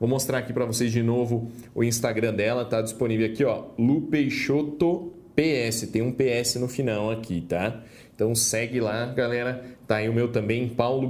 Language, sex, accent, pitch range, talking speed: English, male, Brazilian, 110-140 Hz, 180 wpm